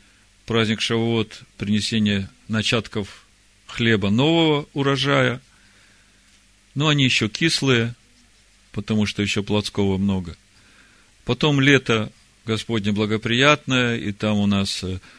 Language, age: Russian, 40-59